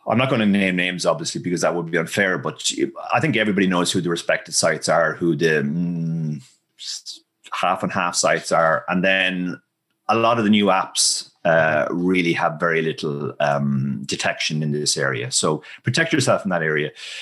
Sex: male